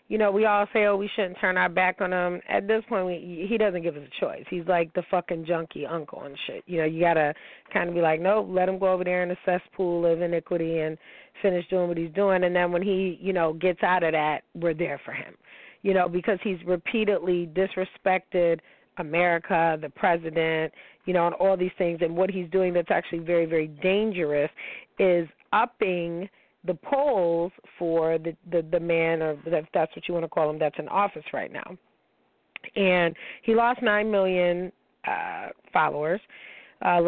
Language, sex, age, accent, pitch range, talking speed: English, female, 30-49, American, 165-190 Hz, 200 wpm